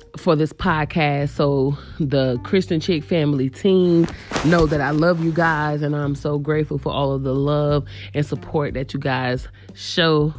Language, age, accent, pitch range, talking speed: English, 20-39, American, 145-190 Hz, 175 wpm